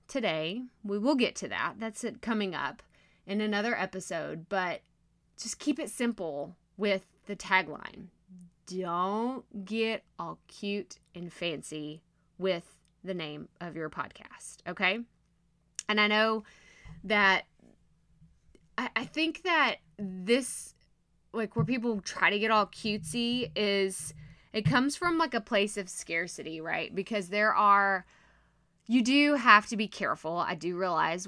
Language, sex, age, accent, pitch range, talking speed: English, female, 20-39, American, 175-235 Hz, 140 wpm